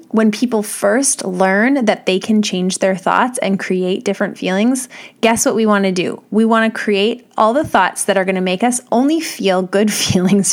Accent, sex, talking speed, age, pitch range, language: American, female, 210 wpm, 20-39, 190-245 Hz, English